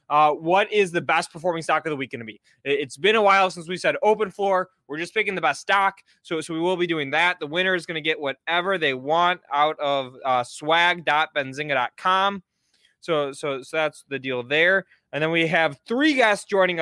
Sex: male